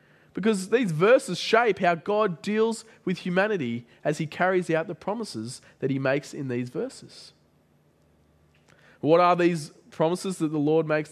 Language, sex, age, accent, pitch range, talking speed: English, male, 20-39, Australian, 150-200 Hz, 155 wpm